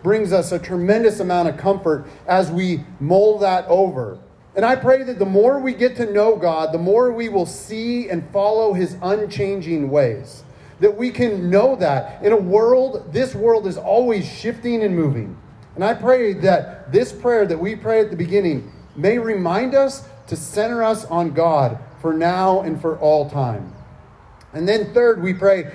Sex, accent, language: male, American, English